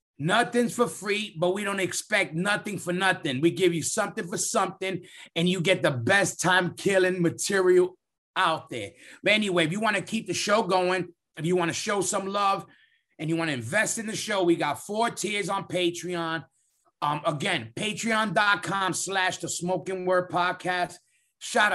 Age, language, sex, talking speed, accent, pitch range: 30-49, English, male, 180 wpm, American, 170-205 Hz